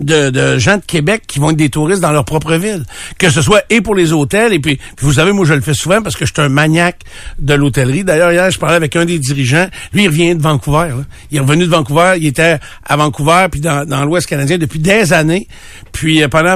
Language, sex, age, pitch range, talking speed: French, male, 60-79, 145-180 Hz, 260 wpm